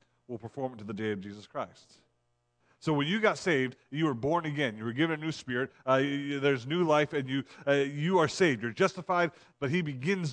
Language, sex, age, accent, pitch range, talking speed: English, male, 40-59, American, 120-160 Hz, 225 wpm